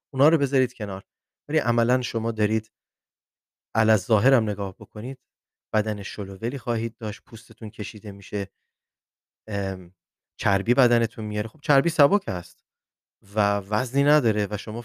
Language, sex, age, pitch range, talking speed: Persian, male, 30-49, 100-115 Hz, 130 wpm